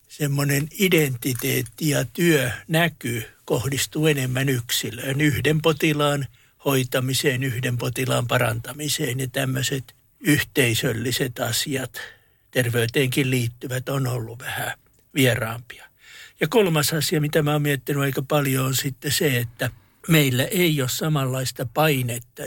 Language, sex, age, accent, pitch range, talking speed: Finnish, male, 60-79, native, 125-145 Hz, 110 wpm